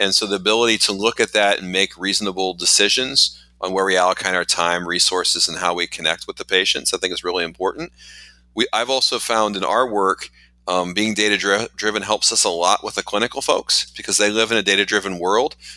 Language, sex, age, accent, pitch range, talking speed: English, male, 30-49, American, 90-105 Hz, 215 wpm